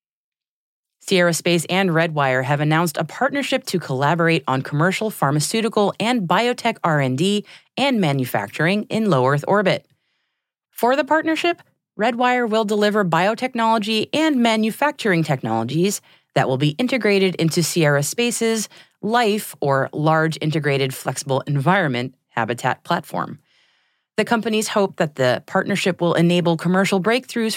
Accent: American